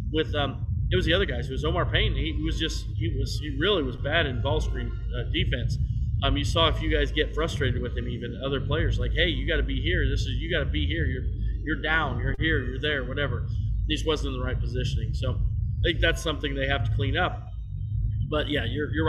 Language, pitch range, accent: English, 110-160 Hz, American